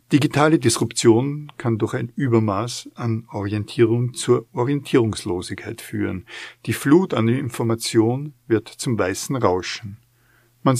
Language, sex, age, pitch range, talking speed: German, male, 50-69, 105-125 Hz, 110 wpm